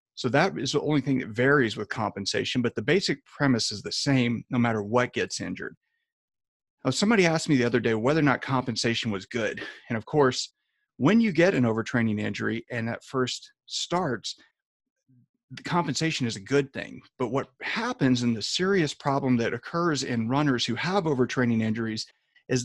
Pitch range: 115-150 Hz